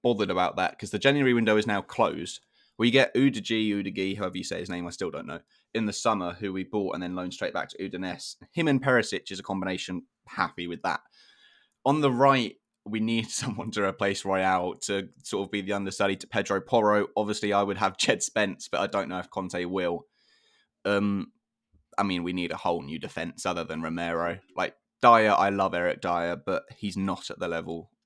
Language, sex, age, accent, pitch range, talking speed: English, male, 20-39, British, 90-120 Hz, 215 wpm